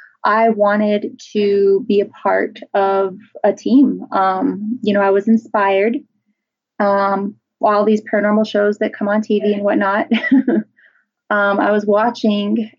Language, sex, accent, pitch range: English, female, American, 200-240 Hz